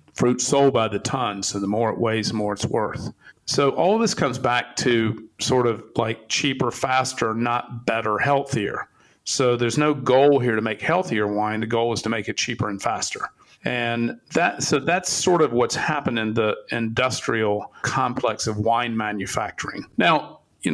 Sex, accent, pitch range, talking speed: male, American, 110-125 Hz, 185 wpm